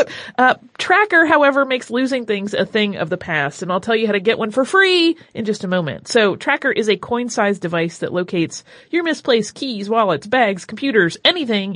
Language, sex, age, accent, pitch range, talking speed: English, female, 30-49, American, 200-270 Hz, 205 wpm